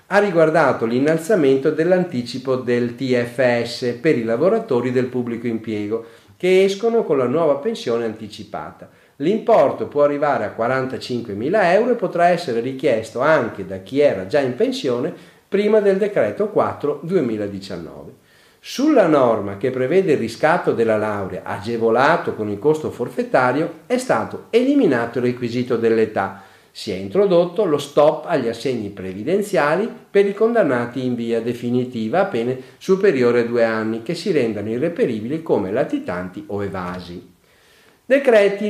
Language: Italian